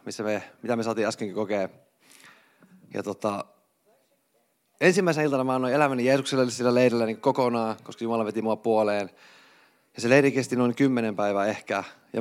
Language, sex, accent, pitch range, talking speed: Finnish, male, native, 110-140 Hz, 145 wpm